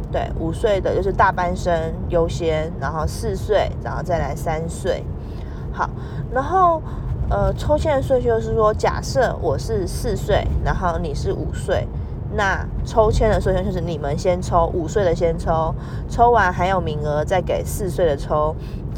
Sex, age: female, 20-39